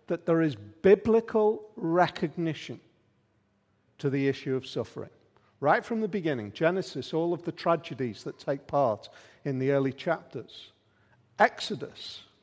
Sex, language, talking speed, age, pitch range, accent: male, English, 130 wpm, 50-69, 150-195 Hz, British